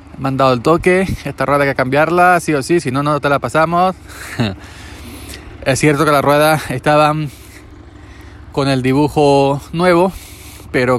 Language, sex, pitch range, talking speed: Spanish, male, 95-140 Hz, 155 wpm